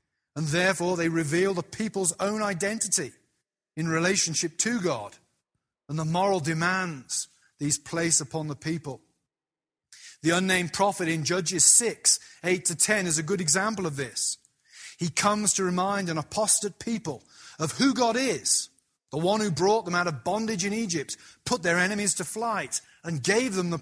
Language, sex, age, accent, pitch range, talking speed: English, male, 30-49, British, 160-210 Hz, 165 wpm